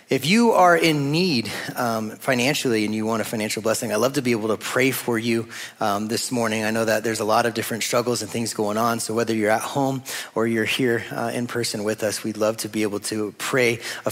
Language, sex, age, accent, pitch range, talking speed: English, male, 30-49, American, 105-125 Hz, 250 wpm